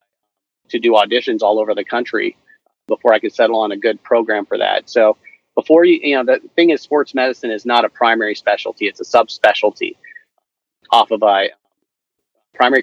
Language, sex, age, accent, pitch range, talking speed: English, male, 40-59, American, 115-145 Hz, 180 wpm